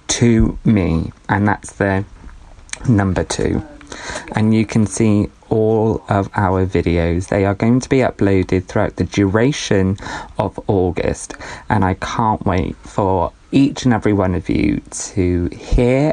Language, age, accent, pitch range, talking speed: English, 20-39, British, 95-125 Hz, 145 wpm